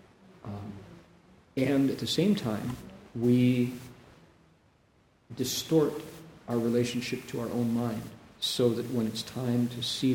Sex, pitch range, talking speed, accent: male, 110-125 Hz, 125 wpm, American